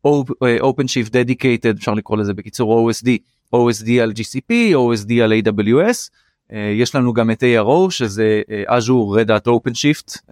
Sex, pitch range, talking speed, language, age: male, 110-135 Hz, 155 wpm, Hebrew, 30-49